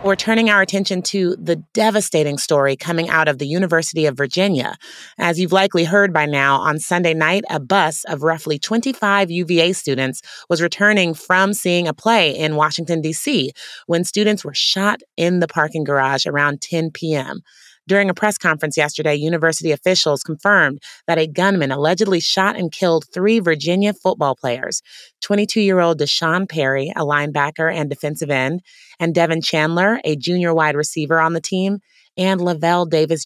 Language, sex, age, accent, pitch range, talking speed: English, female, 30-49, American, 150-180 Hz, 160 wpm